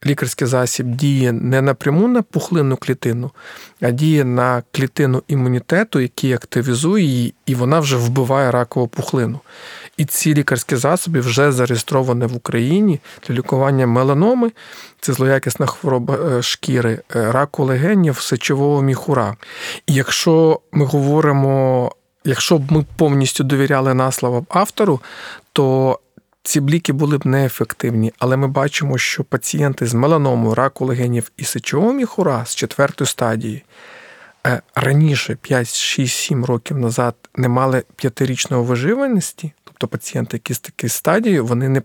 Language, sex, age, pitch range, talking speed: Ukrainian, male, 40-59, 125-150 Hz, 130 wpm